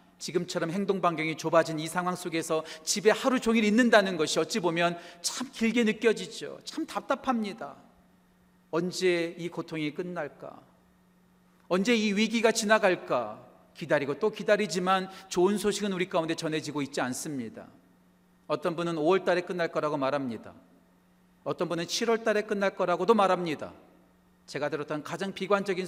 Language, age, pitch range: Korean, 40-59, 160-220 Hz